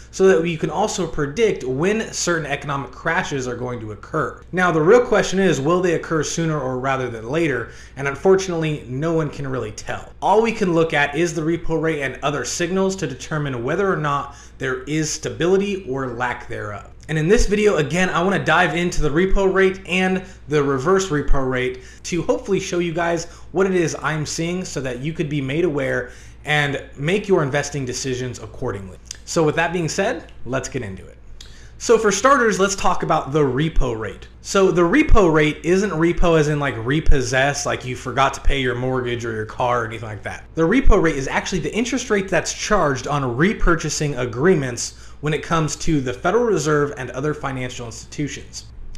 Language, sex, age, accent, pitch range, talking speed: English, male, 30-49, American, 130-180 Hz, 200 wpm